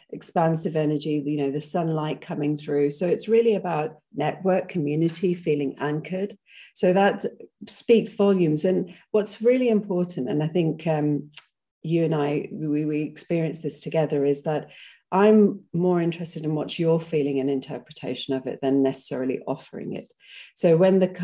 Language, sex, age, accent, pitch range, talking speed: English, female, 40-59, British, 145-180 Hz, 160 wpm